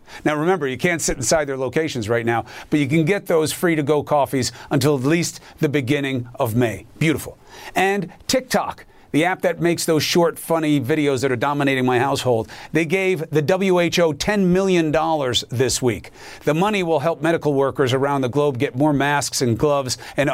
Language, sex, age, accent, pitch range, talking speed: English, male, 40-59, American, 135-185 Hz, 190 wpm